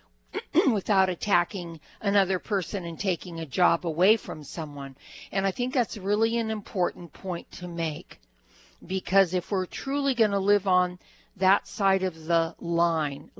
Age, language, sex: 50-69, English, female